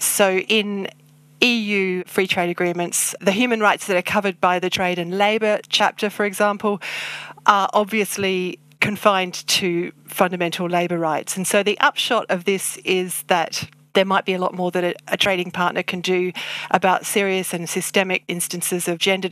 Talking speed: 170 wpm